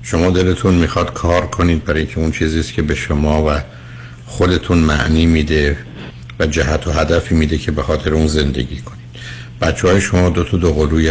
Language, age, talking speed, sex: Persian, 60-79, 180 wpm, male